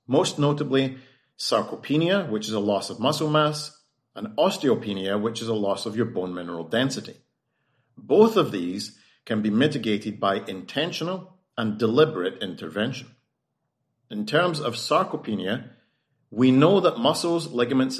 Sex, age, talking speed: male, 40-59, 135 wpm